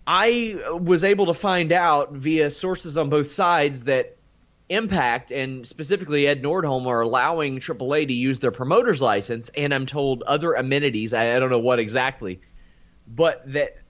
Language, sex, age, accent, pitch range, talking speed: English, male, 30-49, American, 120-160 Hz, 160 wpm